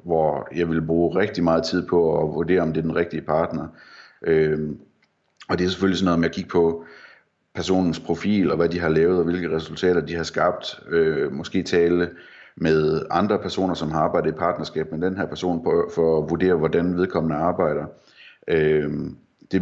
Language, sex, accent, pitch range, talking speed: Danish, male, native, 80-95 Hz, 185 wpm